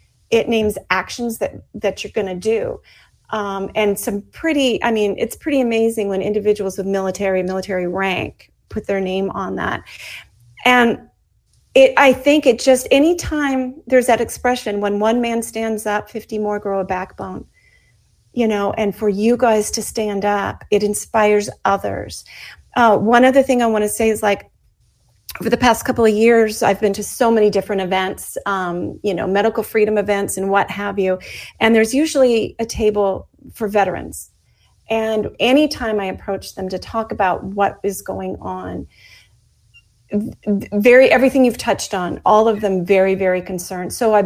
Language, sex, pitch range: English, female, 195-225 Hz